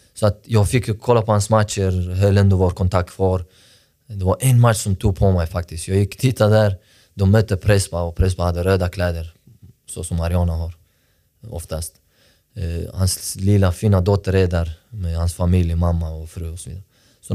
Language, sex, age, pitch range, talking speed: Swedish, male, 20-39, 85-100 Hz, 185 wpm